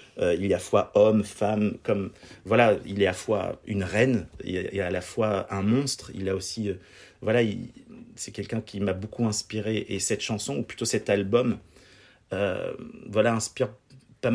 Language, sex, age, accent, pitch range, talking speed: French, male, 30-49, French, 100-115 Hz, 190 wpm